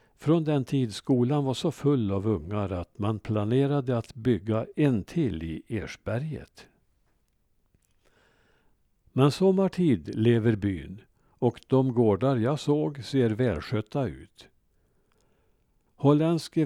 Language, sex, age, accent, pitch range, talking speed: Swedish, male, 60-79, Norwegian, 105-140 Hz, 110 wpm